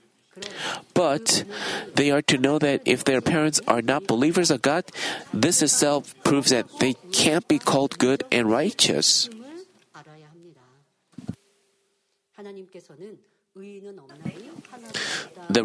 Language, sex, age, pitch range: Korean, male, 50-69, 130-180 Hz